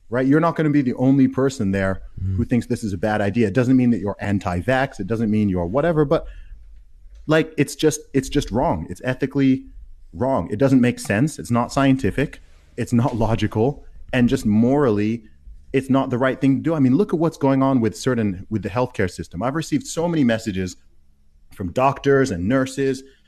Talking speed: 205 wpm